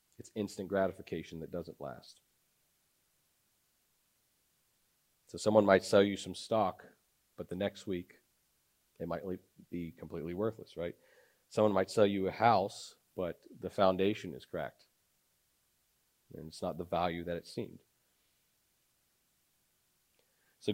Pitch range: 90-110 Hz